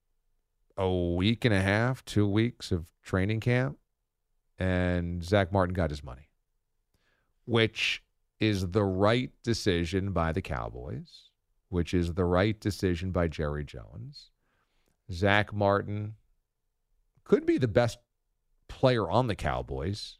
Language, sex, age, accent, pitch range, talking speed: English, male, 40-59, American, 95-125 Hz, 125 wpm